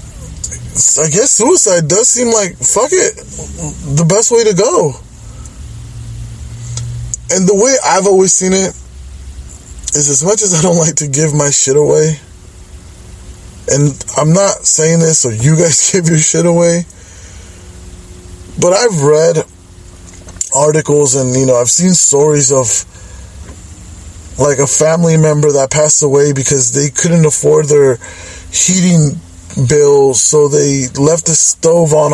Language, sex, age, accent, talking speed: English, male, 20-39, American, 140 wpm